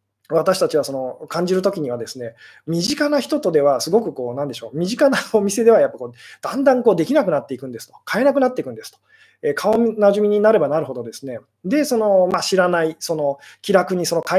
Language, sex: Japanese, male